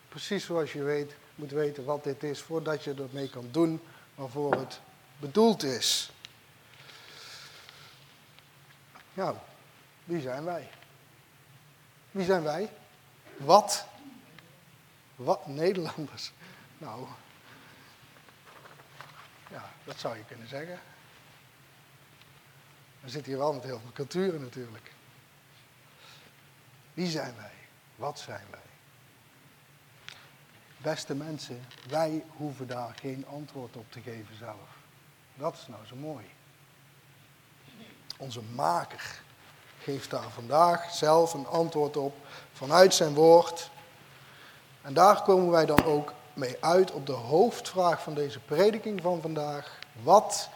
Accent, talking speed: Dutch, 115 wpm